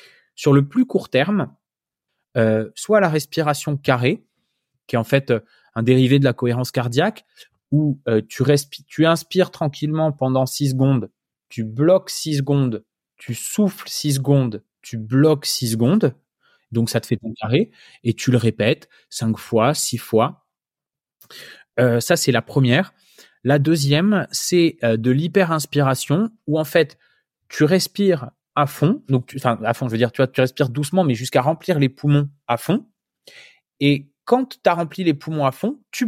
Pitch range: 130-180 Hz